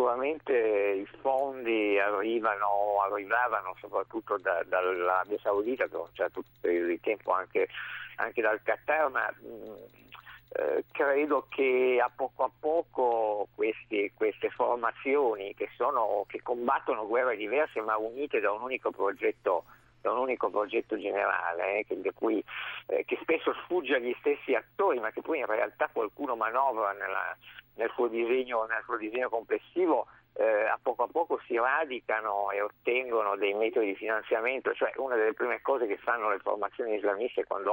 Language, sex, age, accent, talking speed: Italian, male, 50-69, native, 160 wpm